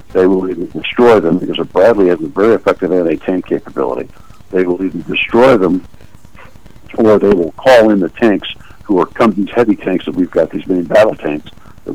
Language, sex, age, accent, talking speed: English, male, 60-79, American, 200 wpm